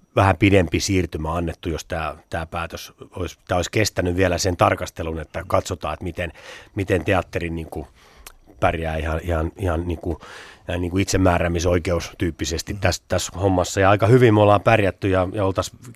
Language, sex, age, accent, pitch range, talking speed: Finnish, male, 30-49, native, 85-100 Hz, 150 wpm